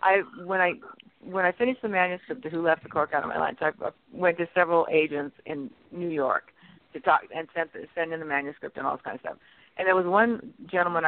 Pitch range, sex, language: 165-210 Hz, female, English